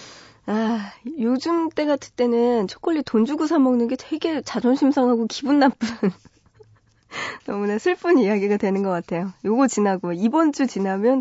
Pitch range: 185-275 Hz